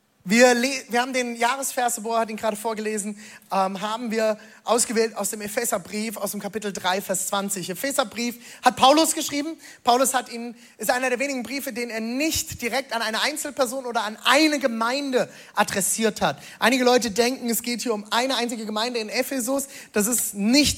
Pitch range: 225-310 Hz